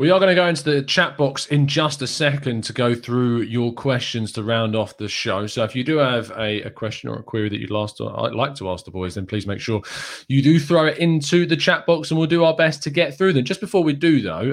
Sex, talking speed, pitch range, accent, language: male, 275 wpm, 110-145 Hz, British, English